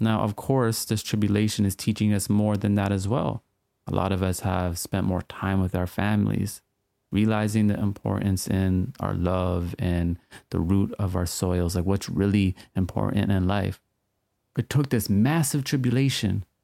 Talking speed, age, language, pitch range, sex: 170 wpm, 30-49, English, 100-115 Hz, male